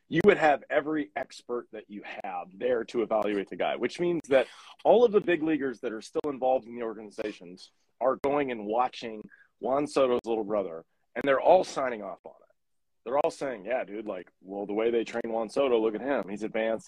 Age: 30-49